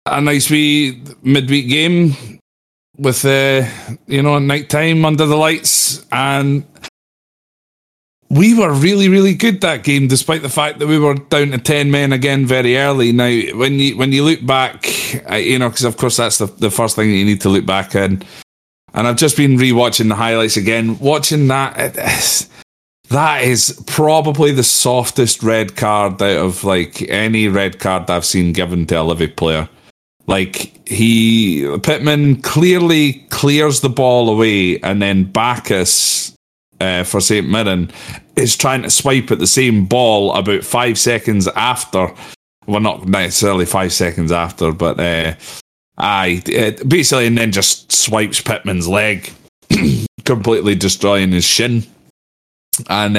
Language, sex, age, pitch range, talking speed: English, male, 30-49, 100-140 Hz, 155 wpm